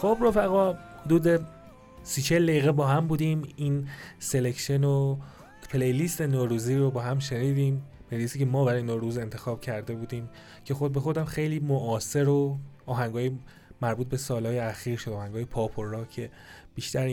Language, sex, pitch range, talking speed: Persian, male, 110-135 Hz, 150 wpm